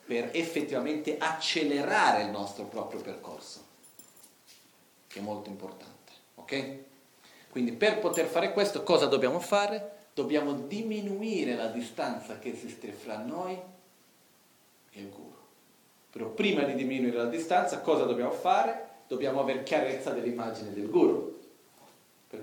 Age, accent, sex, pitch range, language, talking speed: 40-59, native, male, 105-135 Hz, Italian, 125 wpm